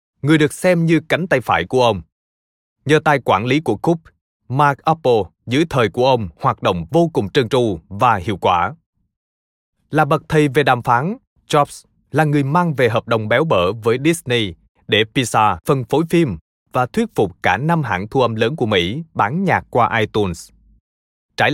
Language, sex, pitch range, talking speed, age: Vietnamese, male, 105-155 Hz, 190 wpm, 20-39